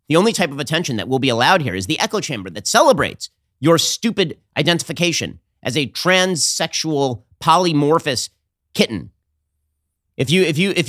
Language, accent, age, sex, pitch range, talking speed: English, American, 30-49, male, 115-180 Hz, 160 wpm